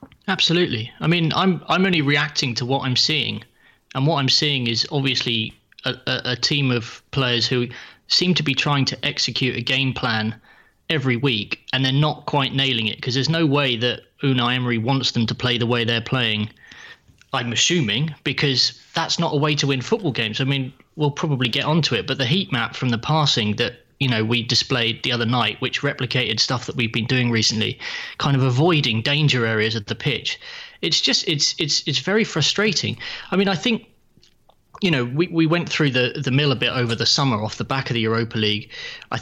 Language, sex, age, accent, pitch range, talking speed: English, male, 20-39, British, 120-145 Hz, 210 wpm